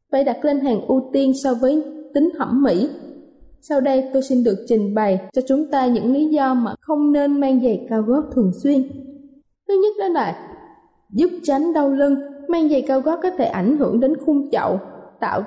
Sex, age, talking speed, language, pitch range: female, 20-39, 205 wpm, Vietnamese, 240-295 Hz